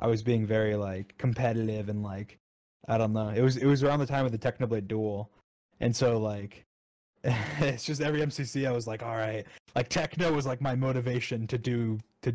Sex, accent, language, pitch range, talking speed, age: male, American, English, 105-125 Hz, 210 wpm, 20-39